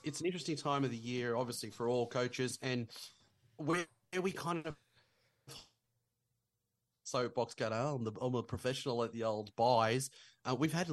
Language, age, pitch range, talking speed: English, 30-49, 110-135 Hz, 170 wpm